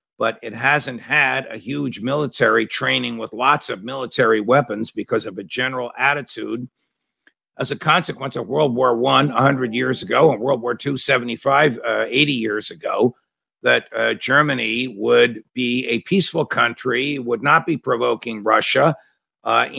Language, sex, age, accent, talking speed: English, male, 50-69, American, 155 wpm